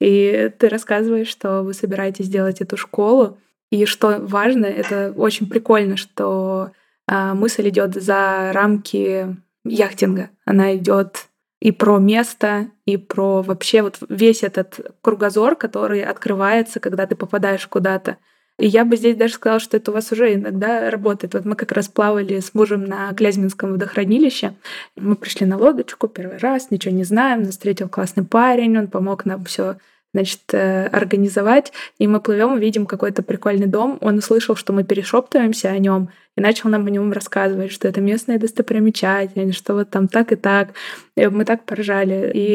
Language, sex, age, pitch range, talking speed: Russian, female, 20-39, 195-220 Hz, 165 wpm